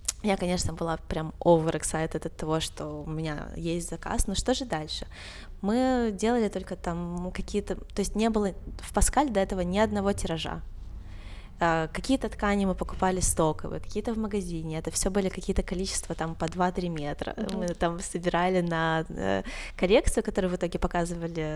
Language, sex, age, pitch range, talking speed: Russian, female, 20-39, 165-205 Hz, 165 wpm